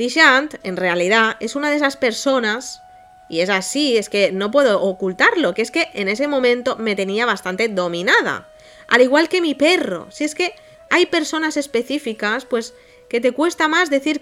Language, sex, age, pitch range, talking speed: Spanish, female, 20-39, 215-295 Hz, 180 wpm